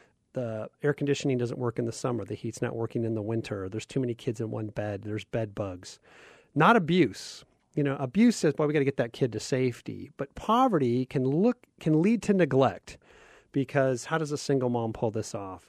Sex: male